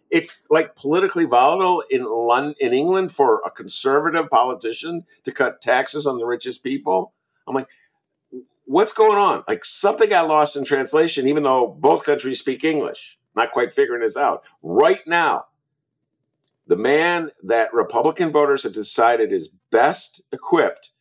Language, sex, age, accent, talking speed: English, male, 50-69, American, 150 wpm